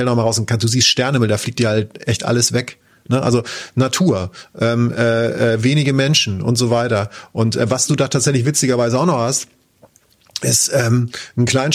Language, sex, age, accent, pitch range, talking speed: German, male, 30-49, German, 115-135 Hz, 190 wpm